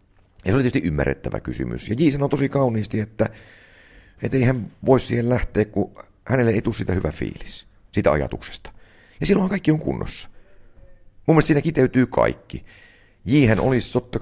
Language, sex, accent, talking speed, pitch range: Finnish, male, native, 165 wpm, 80-115 Hz